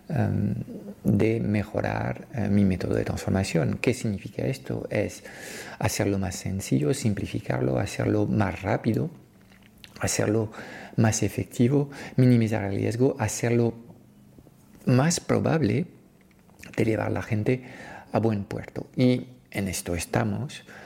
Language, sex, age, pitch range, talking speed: Spanish, male, 50-69, 100-115 Hz, 110 wpm